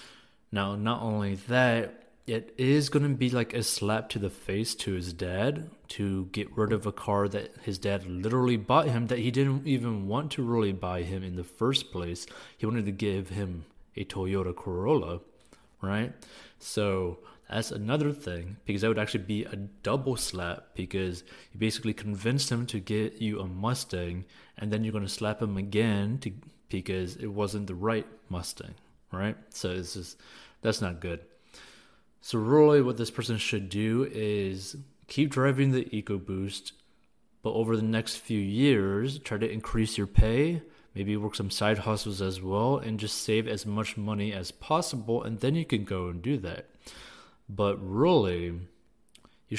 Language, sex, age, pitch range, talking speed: English, male, 30-49, 95-115 Hz, 175 wpm